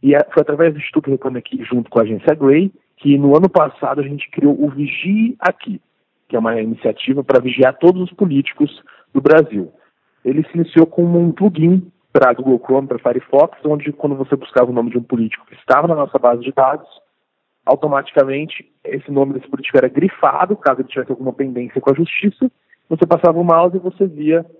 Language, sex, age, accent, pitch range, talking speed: Portuguese, male, 40-59, Brazilian, 130-175 Hz, 200 wpm